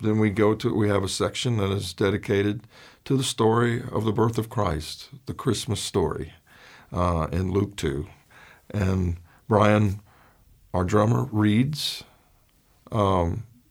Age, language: 50-69, English